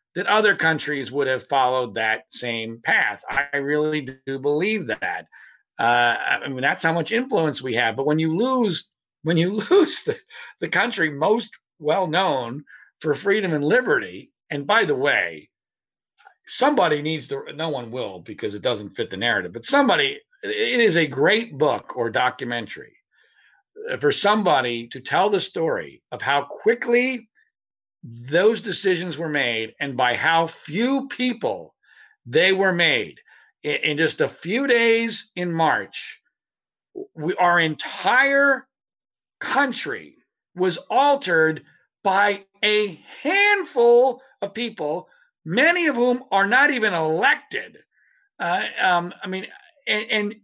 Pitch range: 150-250 Hz